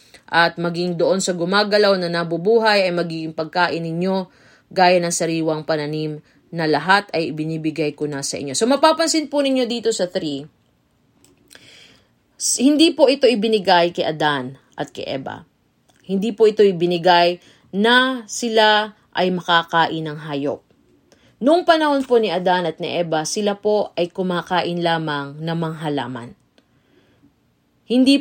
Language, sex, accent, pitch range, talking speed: Filipino, female, native, 160-210 Hz, 140 wpm